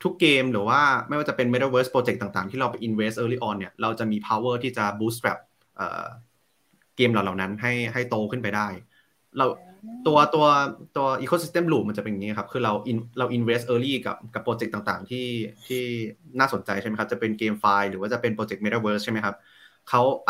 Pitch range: 105-130 Hz